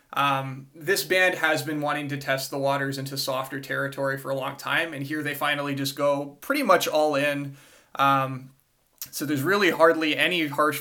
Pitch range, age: 140-160 Hz, 20-39